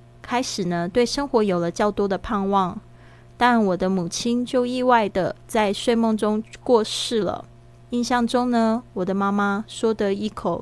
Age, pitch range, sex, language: 20-39, 180-230 Hz, female, Chinese